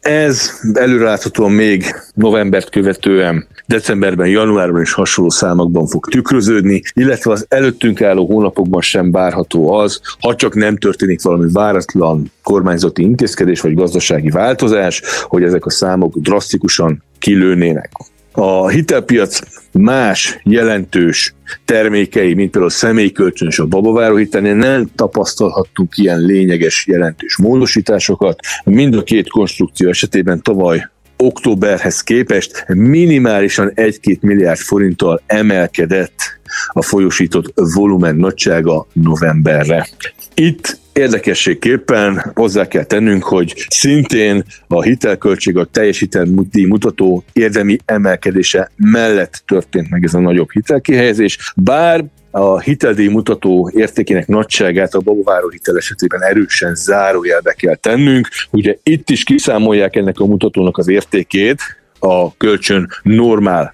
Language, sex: Hungarian, male